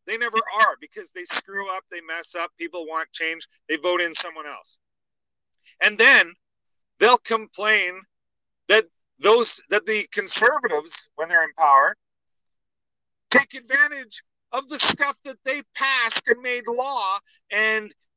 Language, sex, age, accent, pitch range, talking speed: English, male, 40-59, American, 180-270 Hz, 140 wpm